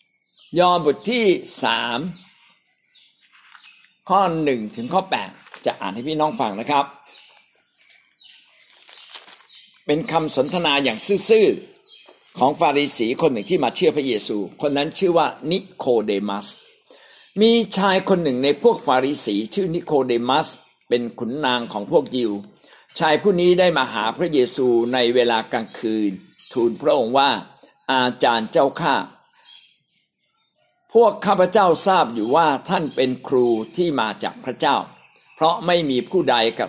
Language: Thai